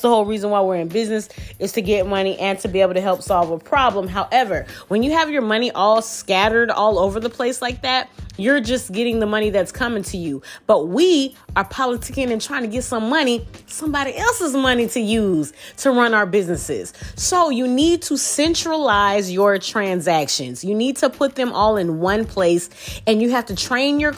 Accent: American